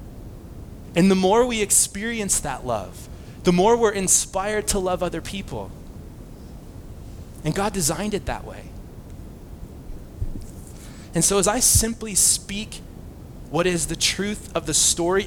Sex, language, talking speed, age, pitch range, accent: male, English, 135 wpm, 20-39, 100-150 Hz, American